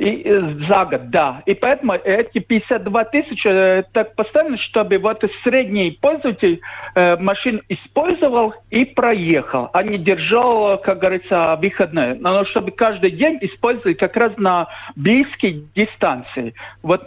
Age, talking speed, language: 50-69, 135 wpm, Russian